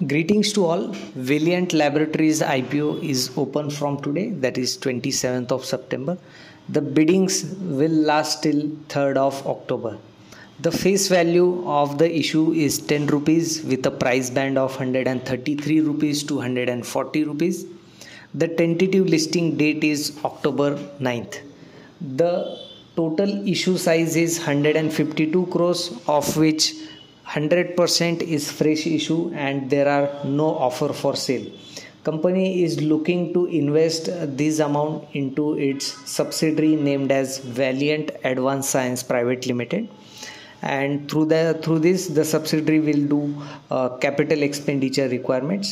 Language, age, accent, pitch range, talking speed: English, 20-39, Indian, 140-165 Hz, 130 wpm